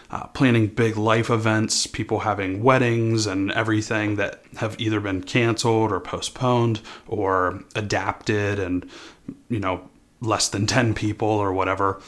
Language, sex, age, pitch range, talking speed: English, male, 30-49, 100-120 Hz, 140 wpm